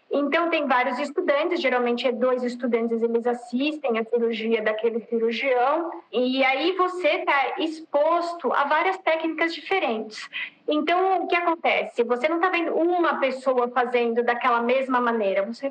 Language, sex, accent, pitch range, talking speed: Portuguese, female, Brazilian, 255-340 Hz, 145 wpm